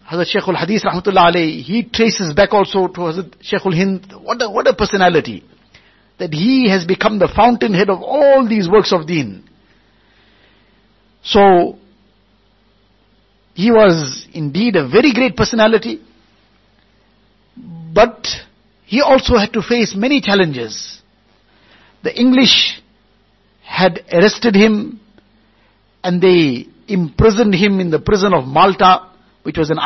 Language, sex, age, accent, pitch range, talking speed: English, male, 60-79, Indian, 165-215 Hz, 120 wpm